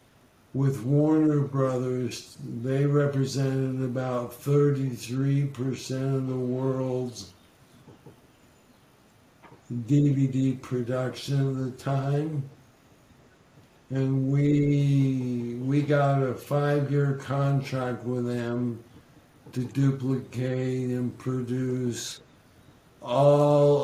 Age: 60-79